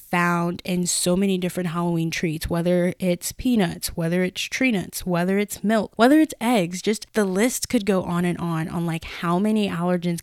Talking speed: 195 wpm